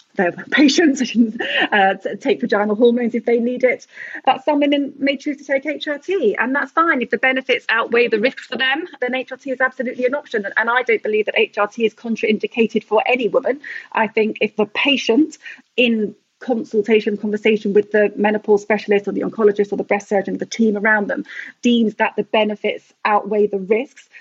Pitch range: 200-250 Hz